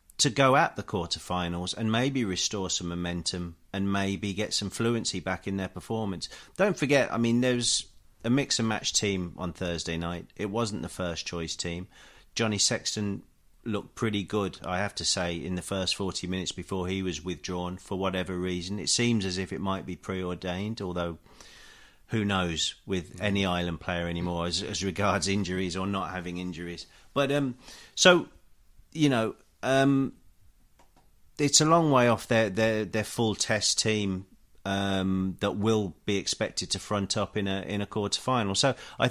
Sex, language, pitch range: male, English, 90-110 Hz